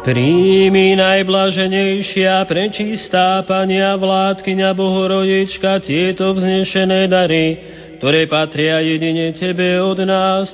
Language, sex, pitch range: Slovak, male, 180-195 Hz